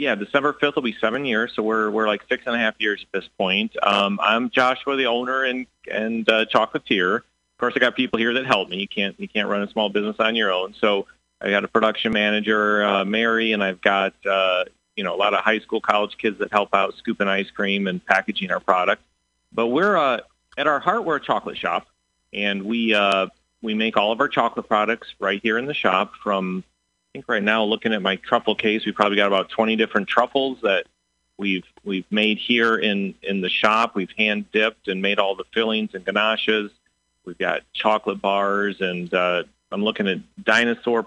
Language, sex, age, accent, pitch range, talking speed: English, male, 40-59, American, 100-115 Hz, 220 wpm